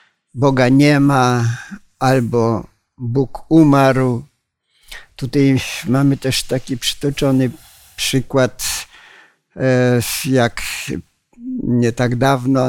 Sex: male